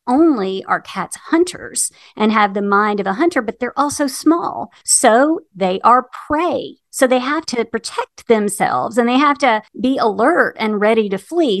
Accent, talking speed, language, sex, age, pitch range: American, 180 wpm, English, female, 50-69, 205-280 Hz